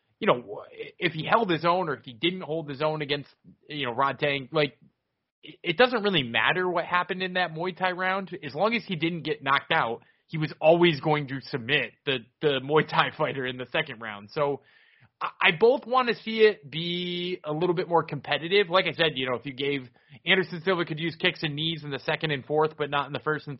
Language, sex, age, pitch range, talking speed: English, male, 20-39, 140-190 Hz, 240 wpm